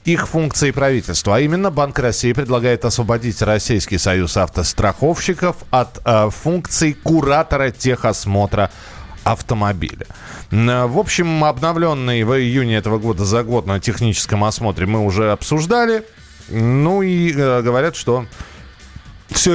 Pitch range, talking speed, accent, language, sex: 95-145 Hz, 120 wpm, native, Russian, male